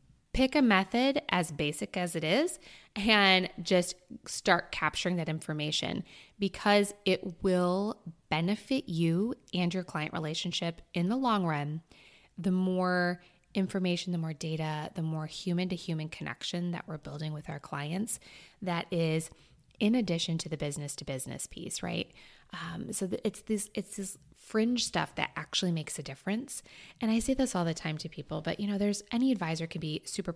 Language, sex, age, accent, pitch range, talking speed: English, female, 20-39, American, 160-195 Hz, 165 wpm